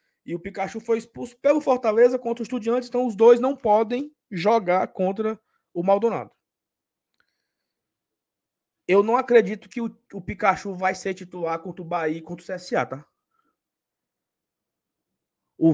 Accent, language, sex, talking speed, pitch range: Brazilian, Portuguese, male, 145 wpm, 180-240 Hz